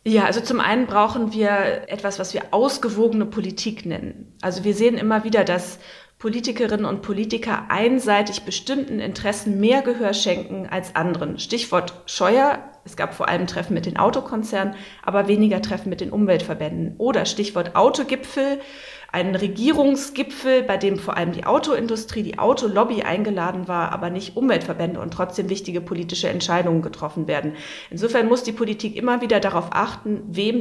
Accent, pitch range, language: German, 180-220 Hz, German